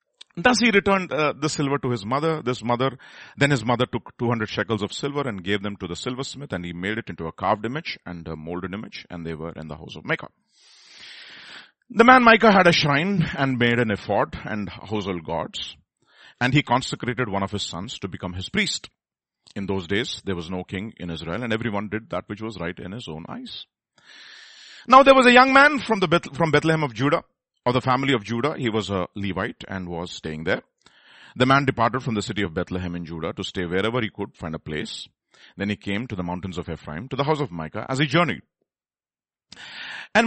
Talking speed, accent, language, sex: 220 wpm, Indian, English, male